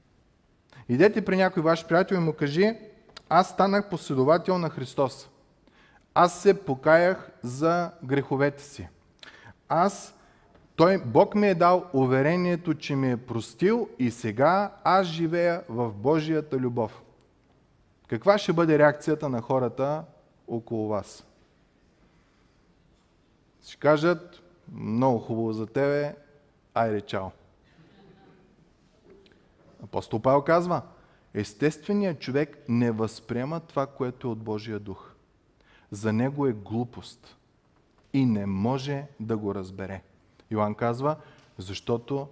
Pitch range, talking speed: 115-165 Hz, 110 wpm